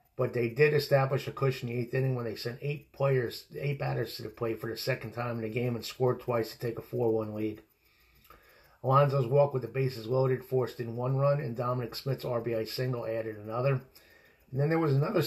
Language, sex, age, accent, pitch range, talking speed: English, male, 50-69, American, 115-145 Hz, 230 wpm